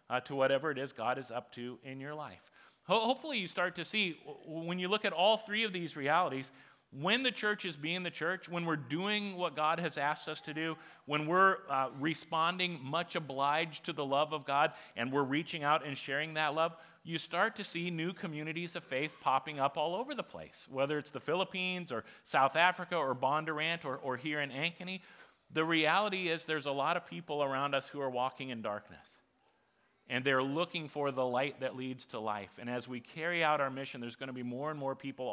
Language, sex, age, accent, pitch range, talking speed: English, male, 40-59, American, 130-165 Hz, 220 wpm